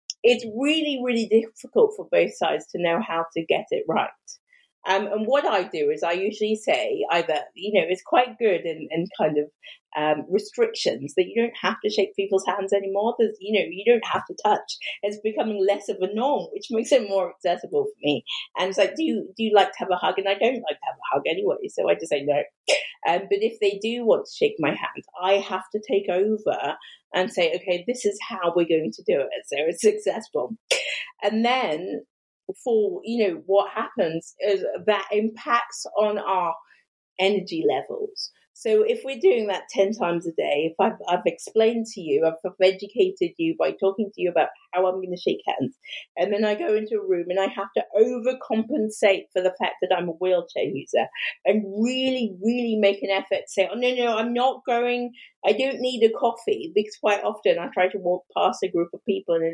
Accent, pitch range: British, 185-260 Hz